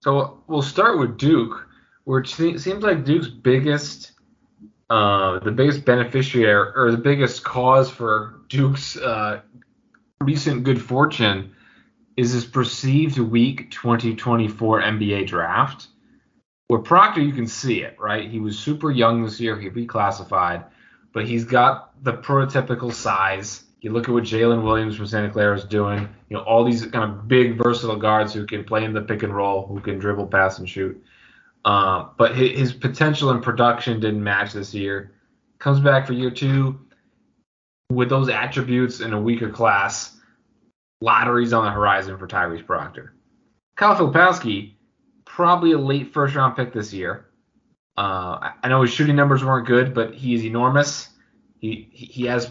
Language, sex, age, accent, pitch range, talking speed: English, male, 20-39, American, 105-135 Hz, 160 wpm